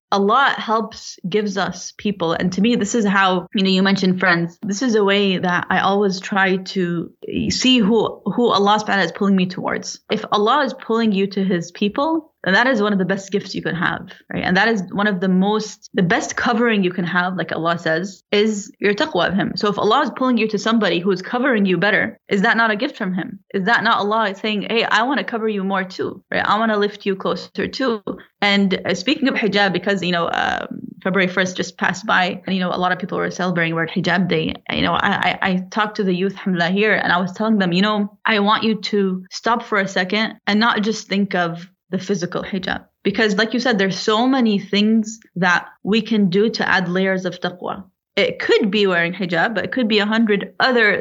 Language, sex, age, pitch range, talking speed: English, female, 20-39, 190-225 Hz, 240 wpm